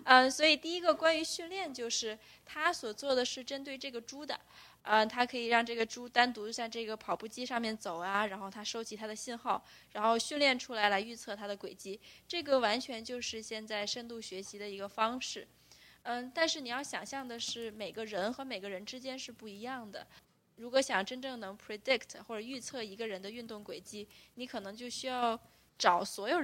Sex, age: female, 20-39